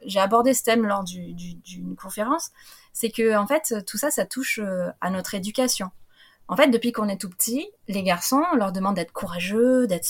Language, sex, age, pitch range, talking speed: French, female, 20-39, 190-240 Hz, 210 wpm